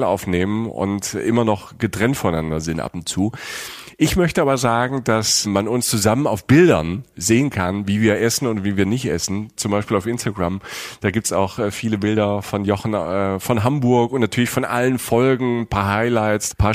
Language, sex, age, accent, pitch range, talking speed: German, male, 40-59, German, 95-120 Hz, 200 wpm